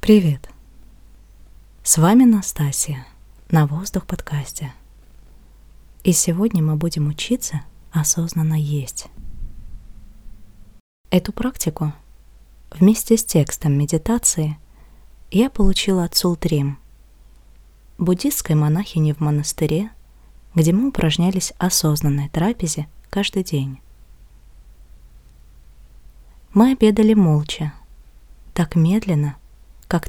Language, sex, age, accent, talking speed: Russian, female, 20-39, native, 80 wpm